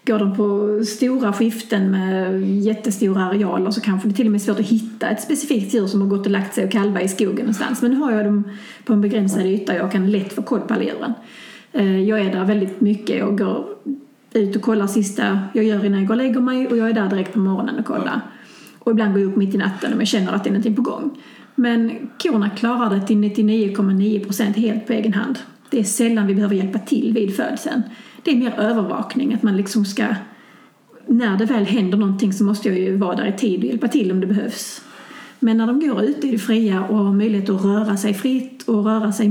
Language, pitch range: Swedish, 205-235 Hz